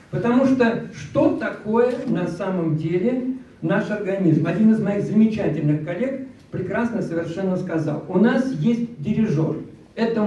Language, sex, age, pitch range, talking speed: Russian, male, 50-69, 165-230 Hz, 130 wpm